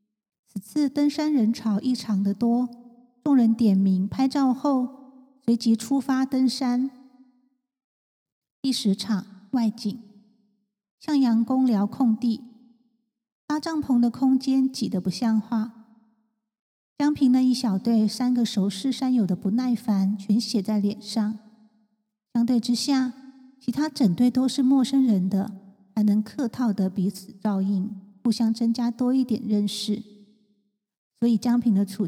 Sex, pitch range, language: female, 210-255 Hz, Chinese